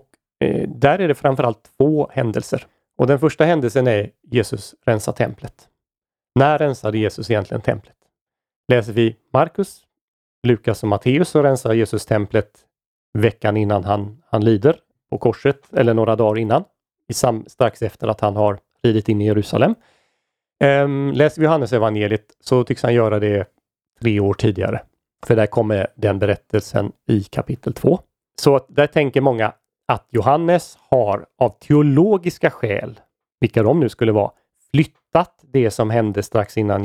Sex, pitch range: male, 105-140 Hz